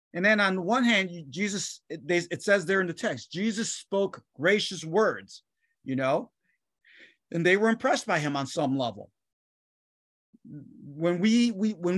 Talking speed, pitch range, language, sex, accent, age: 150 wpm, 155-210 Hz, English, male, American, 30-49